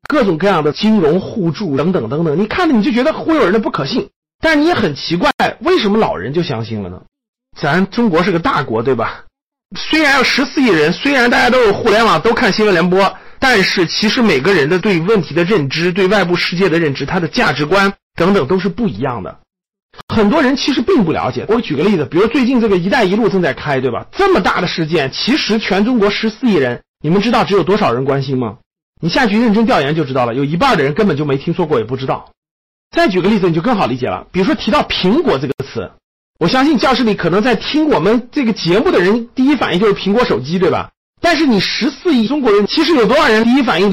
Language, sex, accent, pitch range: Chinese, male, native, 165-240 Hz